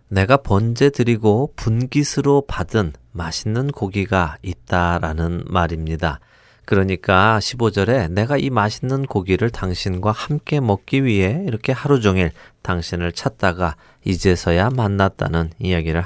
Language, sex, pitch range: Korean, male, 90-120 Hz